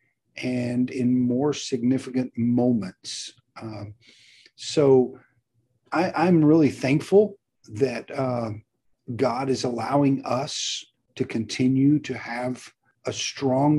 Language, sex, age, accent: English, male, 40-59, American